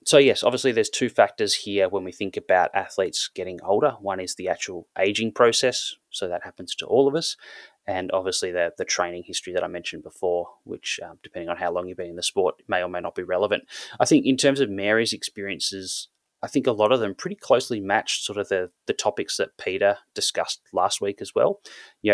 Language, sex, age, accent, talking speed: English, male, 20-39, Australian, 225 wpm